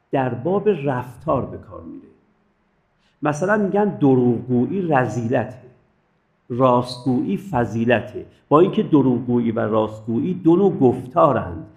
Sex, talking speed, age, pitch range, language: male, 100 wpm, 50-69, 120-180 Hz, Persian